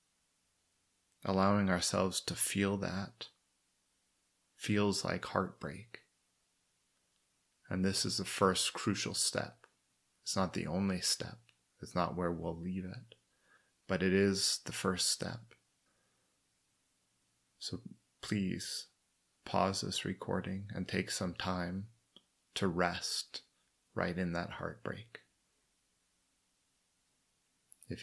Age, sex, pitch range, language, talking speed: 30-49, male, 85-100 Hz, English, 105 wpm